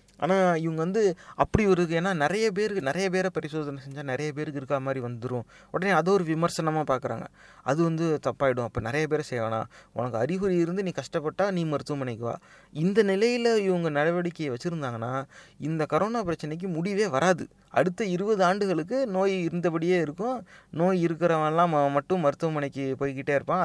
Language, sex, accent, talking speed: Tamil, male, native, 145 wpm